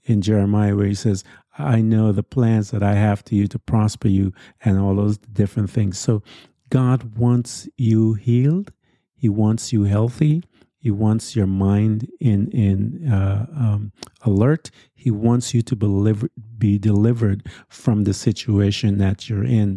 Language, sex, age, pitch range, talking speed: English, male, 50-69, 105-120 Hz, 160 wpm